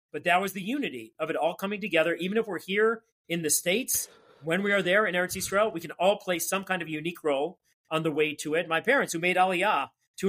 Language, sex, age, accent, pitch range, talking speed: English, male, 40-59, American, 155-200 Hz, 255 wpm